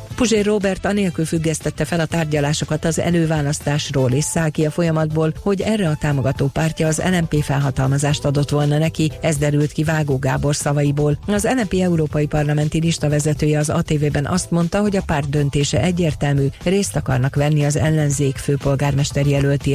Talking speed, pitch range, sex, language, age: 160 wpm, 145-165 Hz, female, Hungarian, 40-59